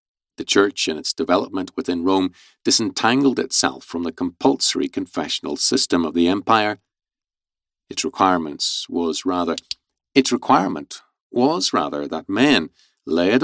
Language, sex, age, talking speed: English, male, 50-69, 125 wpm